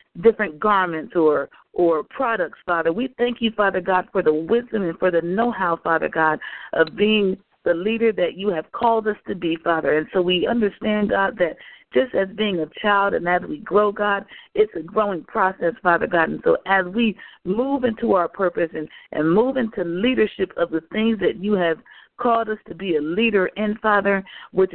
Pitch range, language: 170-220 Hz, English